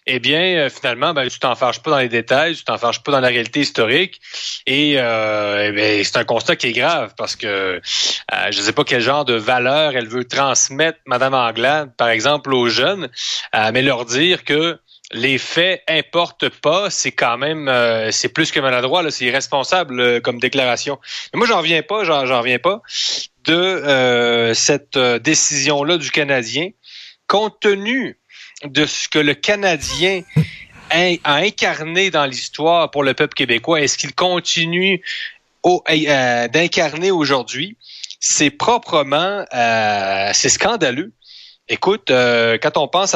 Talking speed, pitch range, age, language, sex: 170 wpm, 125-165 Hz, 30-49, French, male